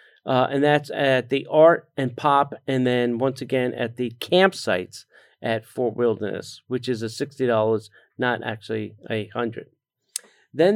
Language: English